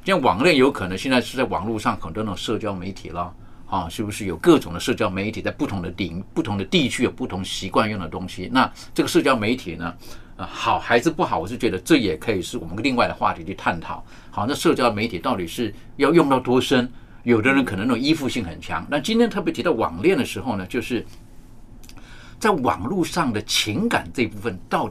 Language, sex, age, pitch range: Chinese, male, 50-69, 95-125 Hz